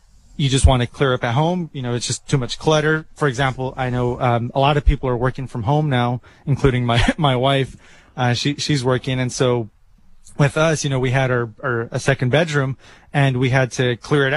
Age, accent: 20-39, American